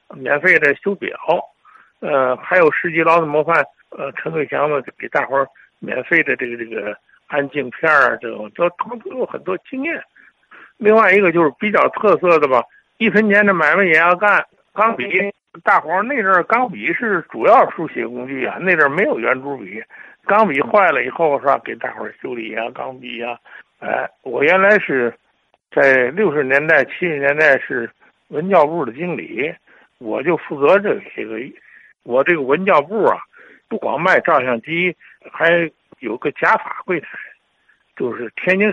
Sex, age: male, 60-79